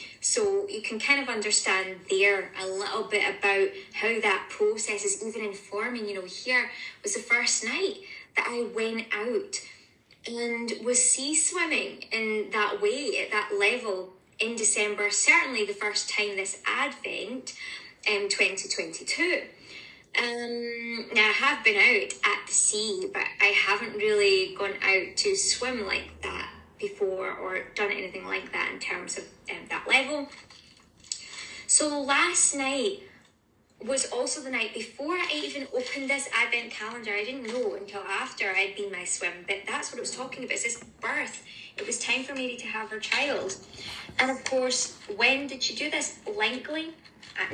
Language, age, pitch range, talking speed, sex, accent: English, 20-39, 210-280 Hz, 165 wpm, female, British